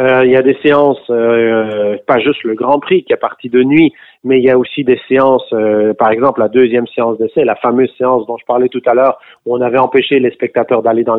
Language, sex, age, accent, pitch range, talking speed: French, male, 40-59, French, 120-150 Hz, 255 wpm